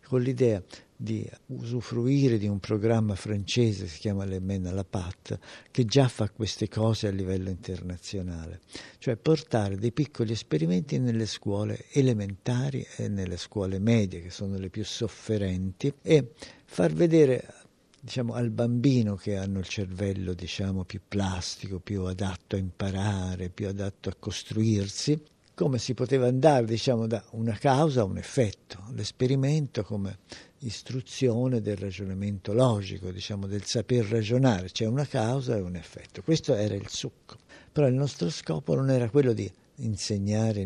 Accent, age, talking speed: native, 50-69, 150 wpm